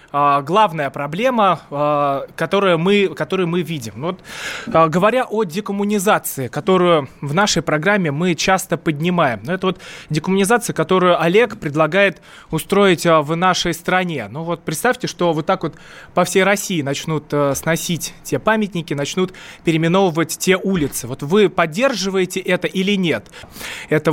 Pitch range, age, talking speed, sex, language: 155-200 Hz, 20-39, 140 wpm, male, Russian